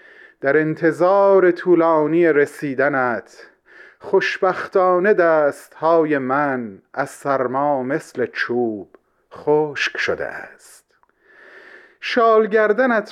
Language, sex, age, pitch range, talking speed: Persian, male, 30-49, 140-190 Hz, 70 wpm